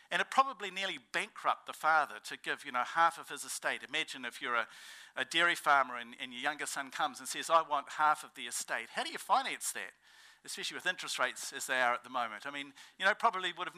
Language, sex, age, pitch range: English, male, 50-69, 140-205 Hz